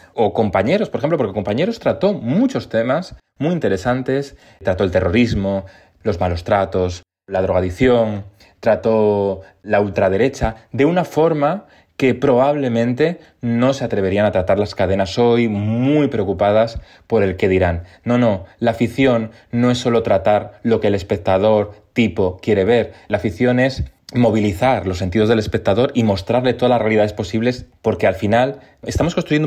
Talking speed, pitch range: 155 wpm, 95-125 Hz